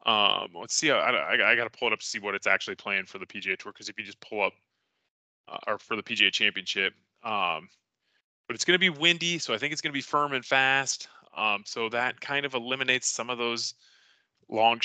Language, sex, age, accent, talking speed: English, male, 20-39, American, 245 wpm